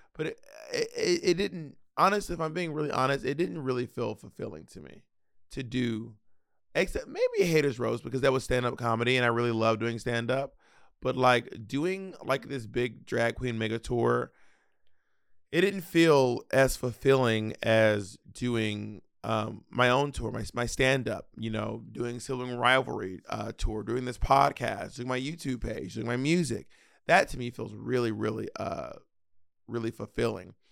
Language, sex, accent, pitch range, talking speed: English, male, American, 115-135 Hz, 170 wpm